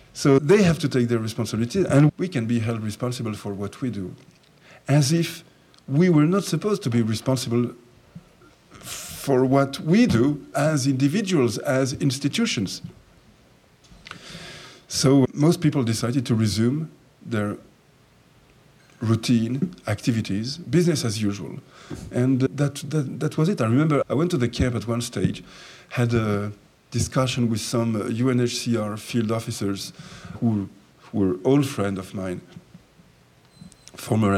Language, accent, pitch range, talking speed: English, French, 105-140 Hz, 135 wpm